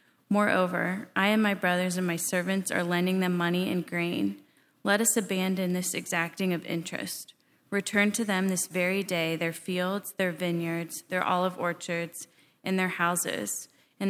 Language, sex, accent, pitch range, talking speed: English, female, American, 170-195 Hz, 160 wpm